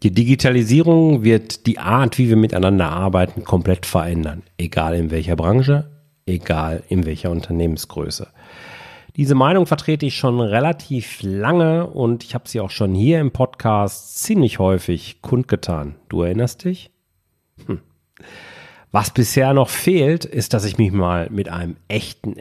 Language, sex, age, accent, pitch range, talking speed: German, male, 40-59, German, 100-140 Hz, 145 wpm